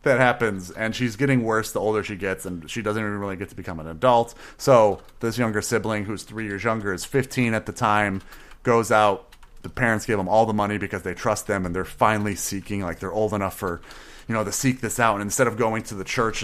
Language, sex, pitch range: English, male, 95-120 Hz